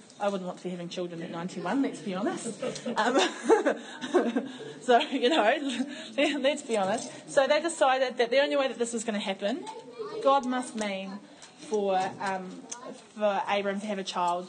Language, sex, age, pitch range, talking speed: English, female, 20-39, 190-245 Hz, 195 wpm